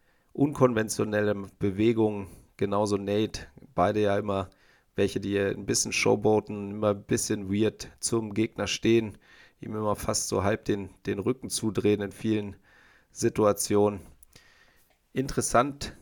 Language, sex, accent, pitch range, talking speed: German, male, German, 100-110 Hz, 120 wpm